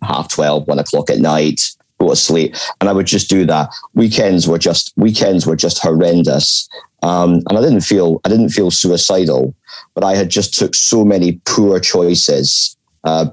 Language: English